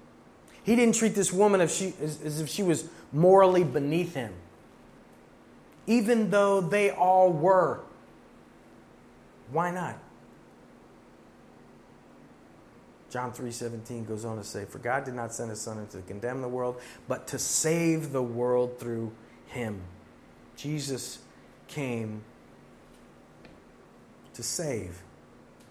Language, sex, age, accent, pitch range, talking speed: English, male, 30-49, American, 120-185 Hz, 110 wpm